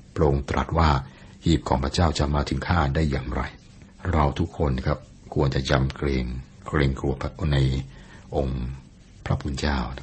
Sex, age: male, 60-79